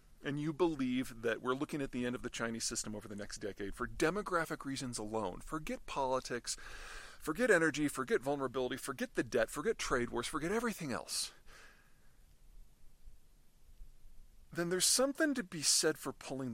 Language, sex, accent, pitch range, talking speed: English, male, American, 125-195 Hz, 160 wpm